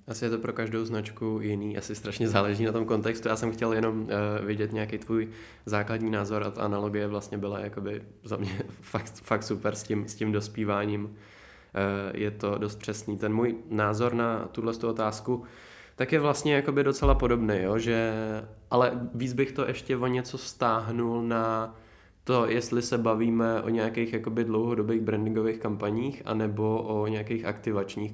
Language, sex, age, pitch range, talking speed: Czech, male, 20-39, 105-115 Hz, 165 wpm